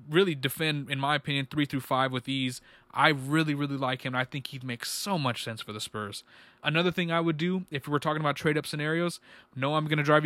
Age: 20-39